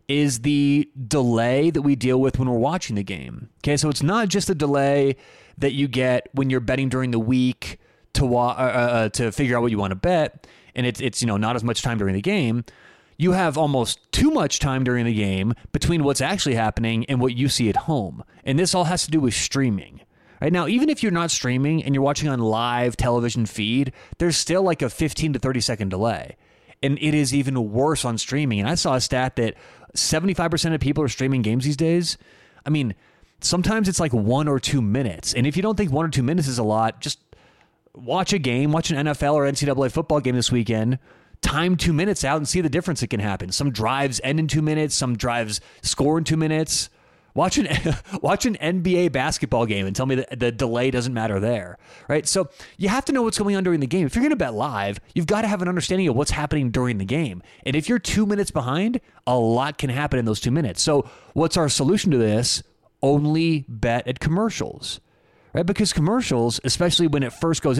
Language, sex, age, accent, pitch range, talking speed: English, male, 30-49, American, 120-160 Hz, 225 wpm